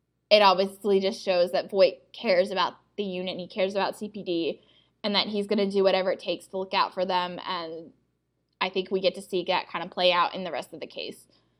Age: 10-29